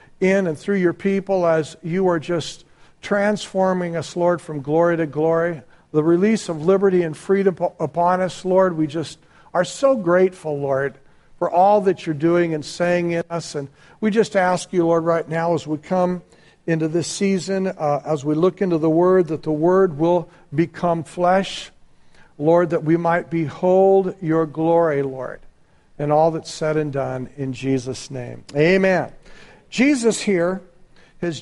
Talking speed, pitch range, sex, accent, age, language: 170 wpm, 155-185 Hz, male, American, 60-79, English